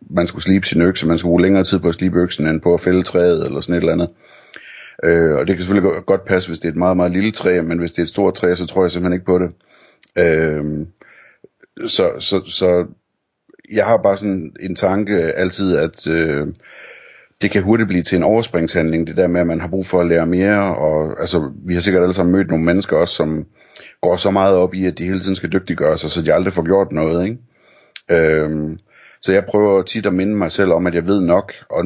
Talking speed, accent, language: 245 wpm, native, Danish